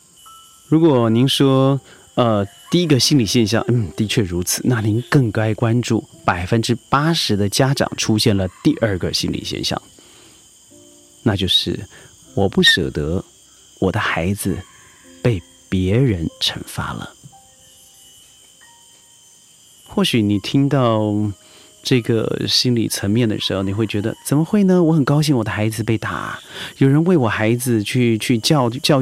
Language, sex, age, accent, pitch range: Chinese, male, 30-49, native, 110-145 Hz